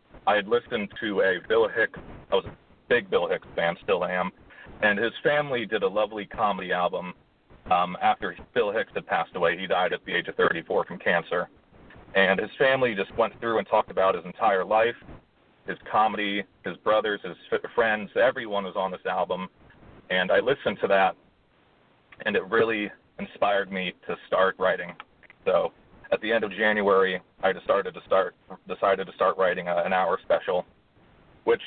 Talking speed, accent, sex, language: 170 wpm, American, male, English